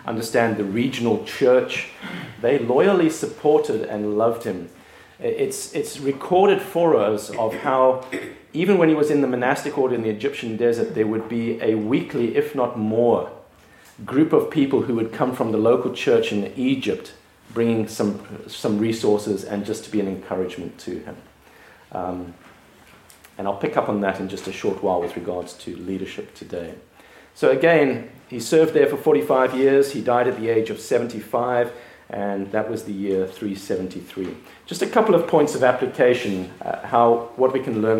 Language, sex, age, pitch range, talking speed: English, male, 40-59, 105-145 Hz, 175 wpm